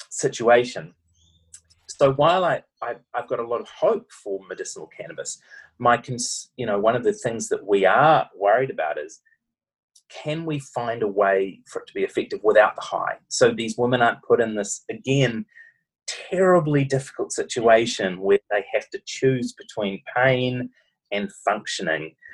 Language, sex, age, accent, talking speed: English, male, 30-49, Australian, 165 wpm